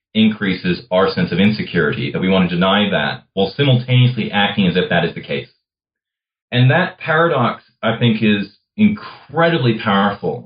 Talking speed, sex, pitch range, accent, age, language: 160 wpm, male, 95-125 Hz, American, 30-49, English